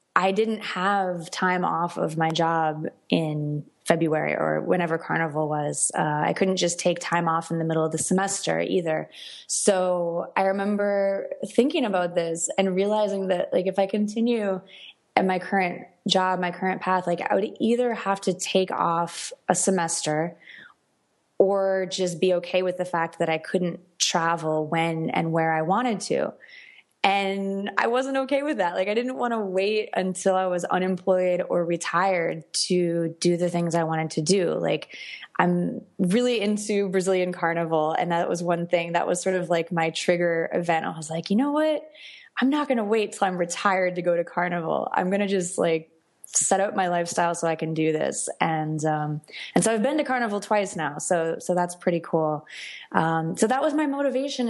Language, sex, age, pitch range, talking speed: English, female, 20-39, 165-200 Hz, 190 wpm